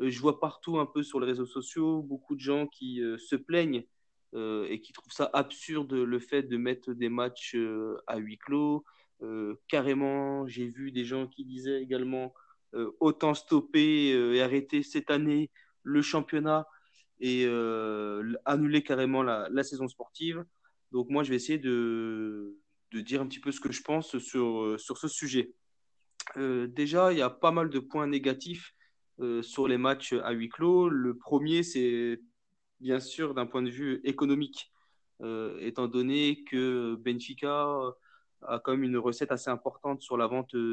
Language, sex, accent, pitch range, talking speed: French, male, French, 120-145 Hz, 175 wpm